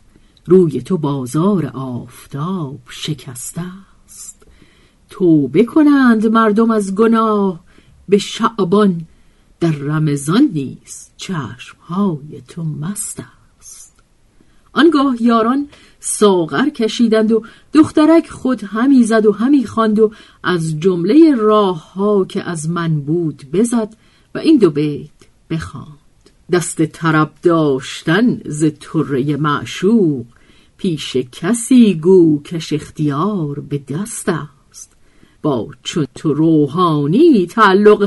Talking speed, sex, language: 100 wpm, female, Persian